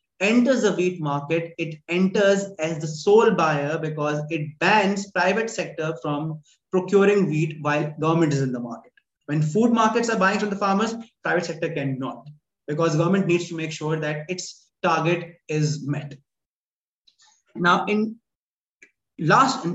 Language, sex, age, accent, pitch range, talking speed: English, male, 20-39, Indian, 155-195 Hz, 150 wpm